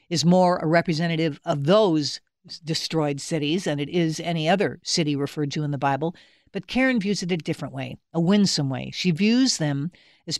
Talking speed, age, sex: 190 wpm, 60-79, female